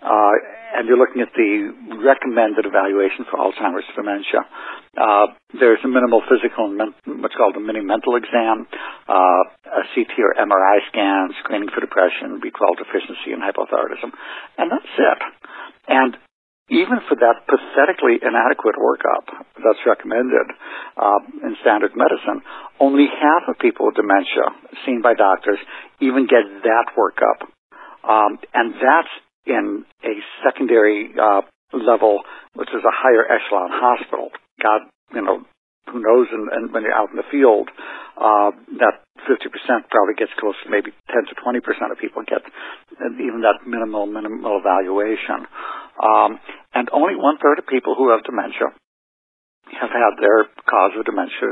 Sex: male